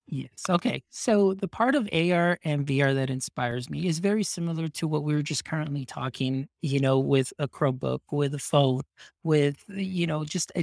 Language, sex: English, male